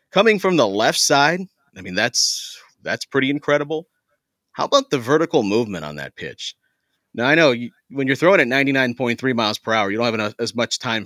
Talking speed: 205 wpm